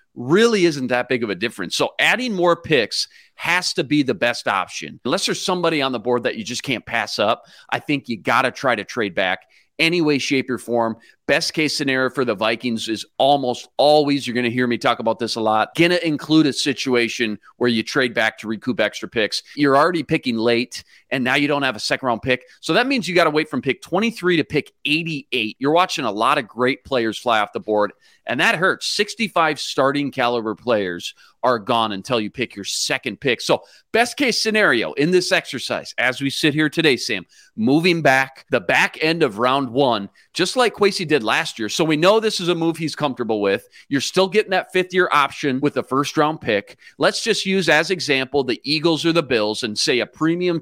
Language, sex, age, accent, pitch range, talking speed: English, male, 40-59, American, 120-165 Hz, 220 wpm